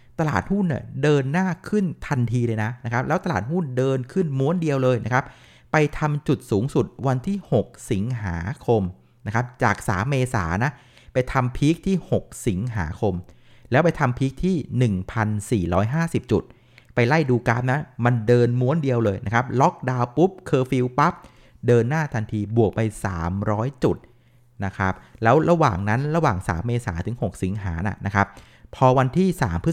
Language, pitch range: Thai, 105-140 Hz